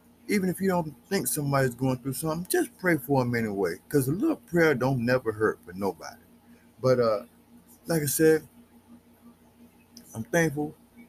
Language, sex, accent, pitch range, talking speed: English, male, American, 130-170 Hz, 160 wpm